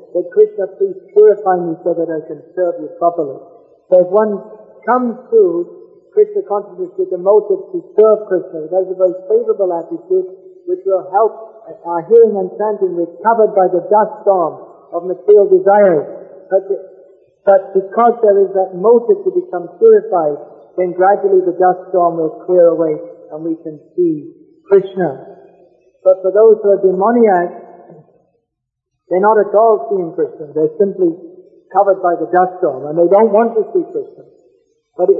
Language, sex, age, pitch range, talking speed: English, male, 50-69, 180-230 Hz, 165 wpm